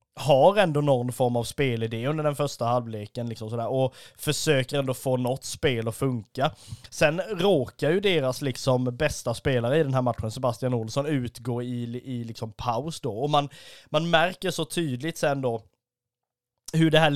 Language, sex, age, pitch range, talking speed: Swedish, male, 20-39, 125-160 Hz, 180 wpm